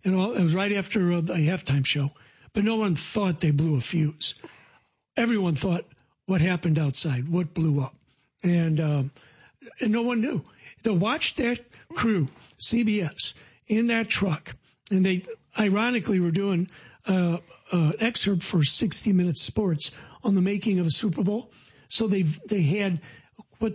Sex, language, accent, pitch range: male, English, American, 165-215 Hz